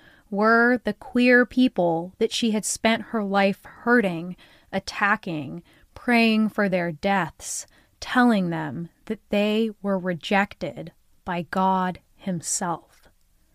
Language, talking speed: English, 110 wpm